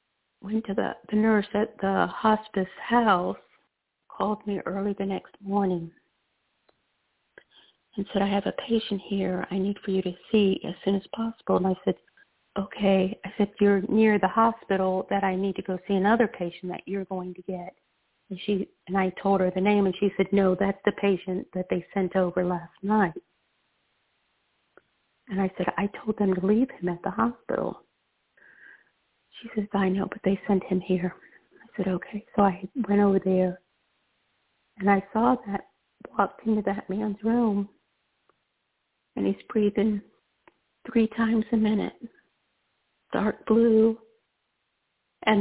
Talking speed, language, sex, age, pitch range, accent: 165 wpm, English, female, 50-69, 195-220 Hz, American